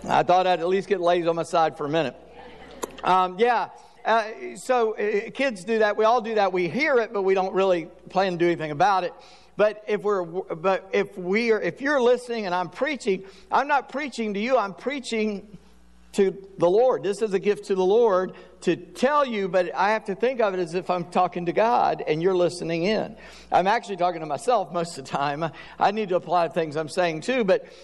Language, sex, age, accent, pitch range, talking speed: English, male, 50-69, American, 160-210 Hz, 220 wpm